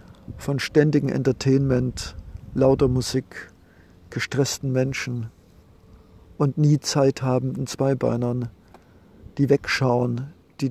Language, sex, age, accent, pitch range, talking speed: German, male, 50-69, German, 105-140 Hz, 80 wpm